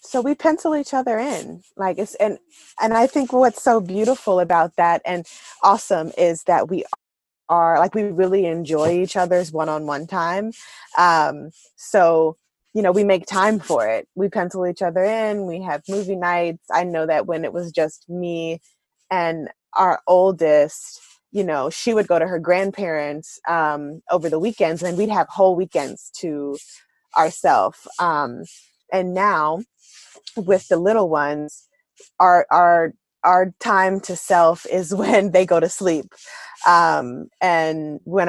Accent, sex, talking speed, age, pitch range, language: American, female, 160 wpm, 20-39, 160-200 Hz, English